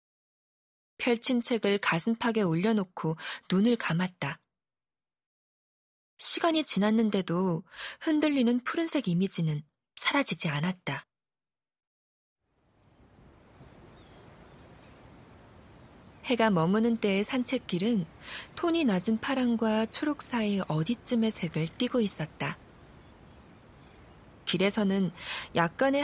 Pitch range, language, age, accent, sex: 175-245 Hz, Korean, 20-39, native, female